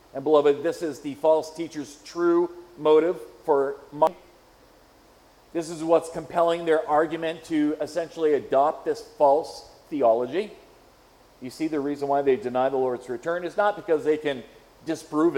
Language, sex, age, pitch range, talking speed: English, male, 40-59, 150-185 Hz, 150 wpm